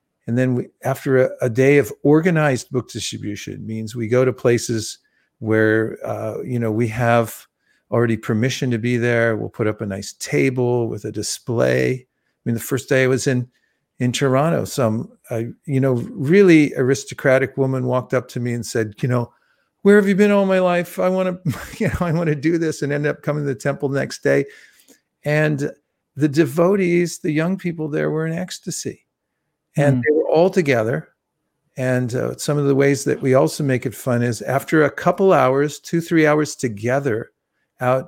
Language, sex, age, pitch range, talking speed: English, male, 50-69, 120-150 Hz, 195 wpm